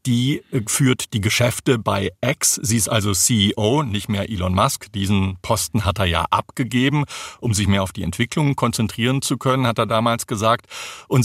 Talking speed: 180 wpm